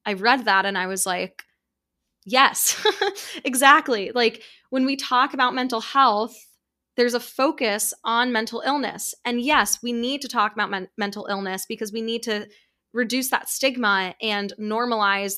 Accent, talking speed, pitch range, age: American, 160 wpm, 195-240 Hz, 10-29